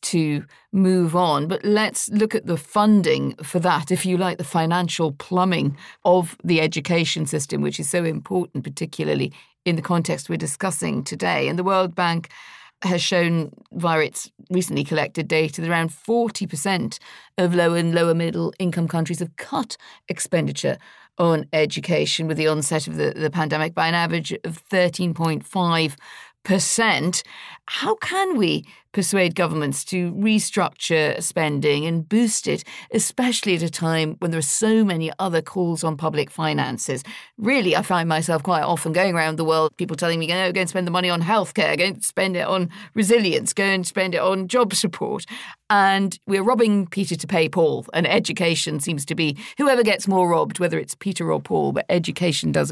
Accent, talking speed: British, 175 wpm